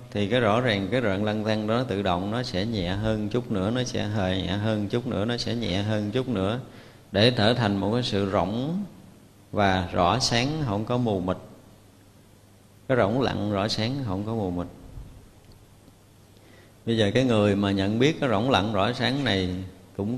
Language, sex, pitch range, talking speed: Vietnamese, male, 100-120 Hz, 200 wpm